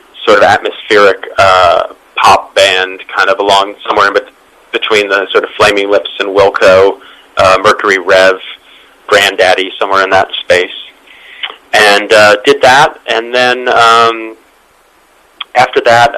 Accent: American